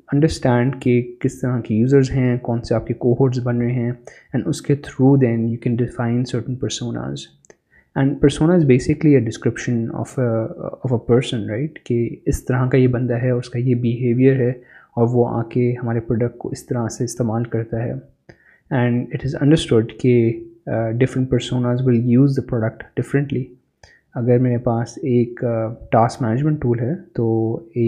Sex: male